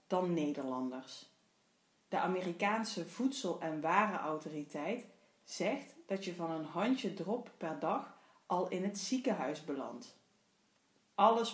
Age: 30-49